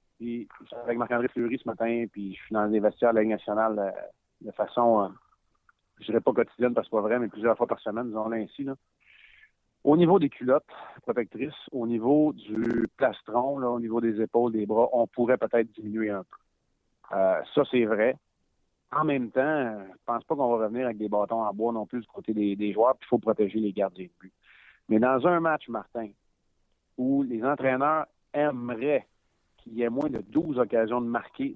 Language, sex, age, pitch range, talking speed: French, male, 40-59, 110-145 Hz, 210 wpm